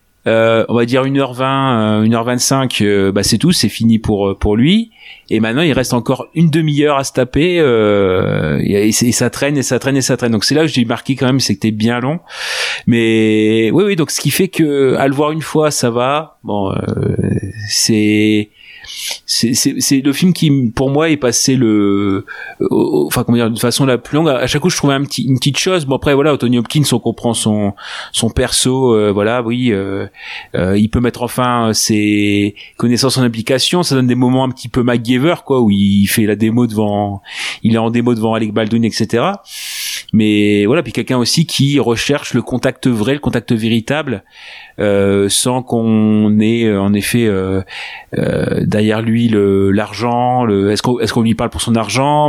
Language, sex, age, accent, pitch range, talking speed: French, male, 30-49, French, 105-135 Hz, 205 wpm